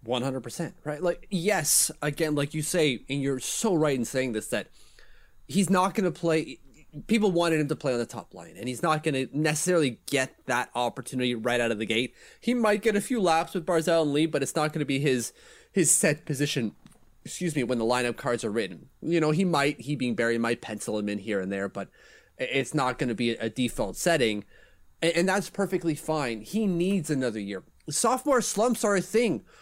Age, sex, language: 30-49, male, English